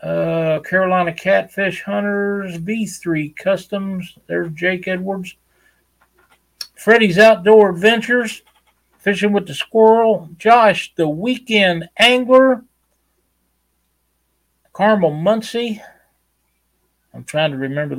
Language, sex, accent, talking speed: English, male, American, 85 wpm